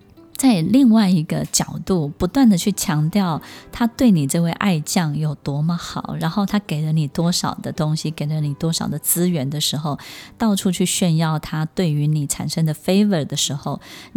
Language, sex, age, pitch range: Chinese, female, 20-39, 155-215 Hz